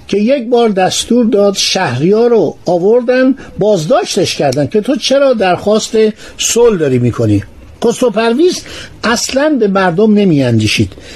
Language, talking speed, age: Persian, 125 wpm, 60-79